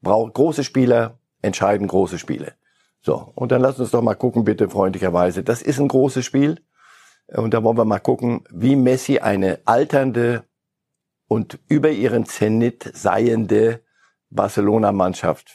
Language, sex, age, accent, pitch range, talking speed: German, male, 50-69, German, 105-135 Hz, 140 wpm